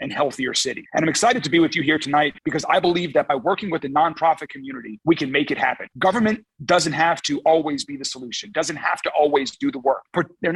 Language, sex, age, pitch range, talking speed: English, male, 30-49, 145-170 Hz, 245 wpm